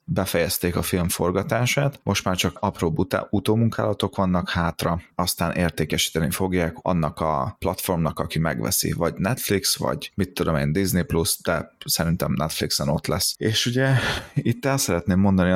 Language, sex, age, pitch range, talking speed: Hungarian, male, 30-49, 85-100 Hz, 150 wpm